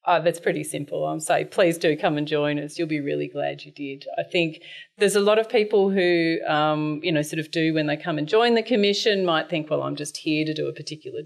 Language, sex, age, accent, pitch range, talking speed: English, female, 30-49, Australian, 145-170 Hz, 260 wpm